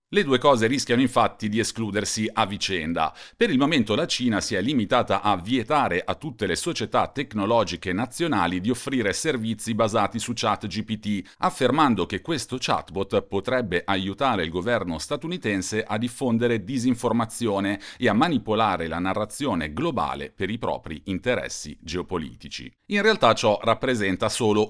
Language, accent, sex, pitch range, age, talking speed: Italian, native, male, 100-130 Hz, 40-59, 145 wpm